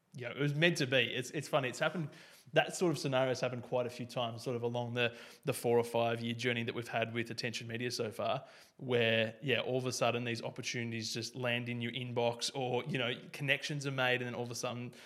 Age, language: 20-39, English